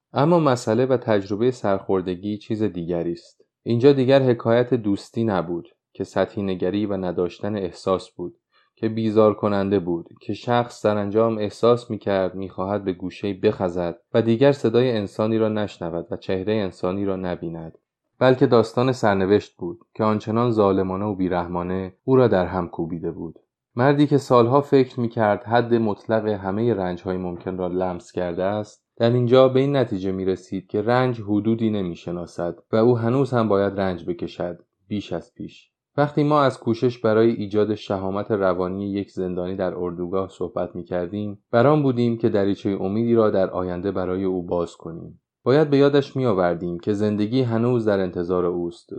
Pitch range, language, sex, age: 95-120 Hz, Persian, male, 30-49